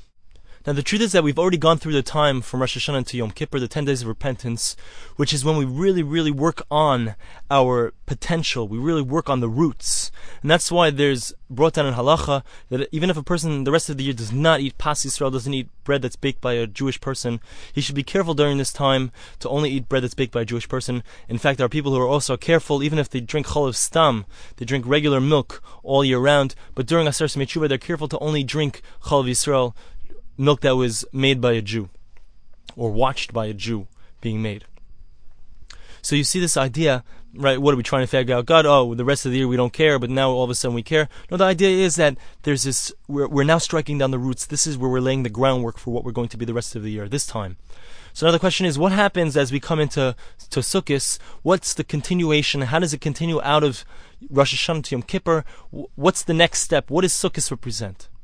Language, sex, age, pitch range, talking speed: English, male, 20-39, 125-155 Hz, 240 wpm